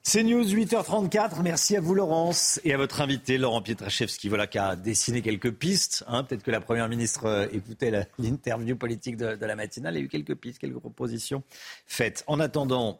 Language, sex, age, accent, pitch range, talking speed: French, male, 40-59, French, 110-150 Hz, 200 wpm